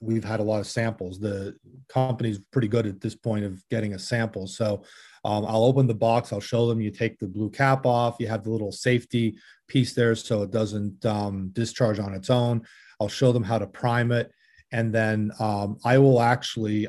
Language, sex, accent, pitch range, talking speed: English, male, American, 110-125 Hz, 215 wpm